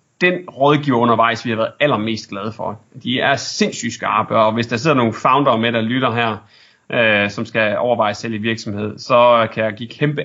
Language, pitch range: Danish, 110-140 Hz